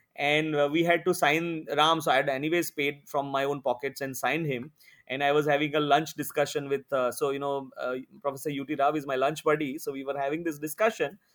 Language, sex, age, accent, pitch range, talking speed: English, male, 30-49, Indian, 135-165 Hz, 235 wpm